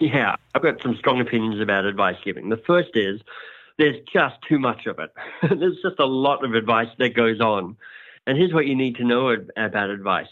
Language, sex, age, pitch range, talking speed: English, male, 60-79, 115-145 Hz, 210 wpm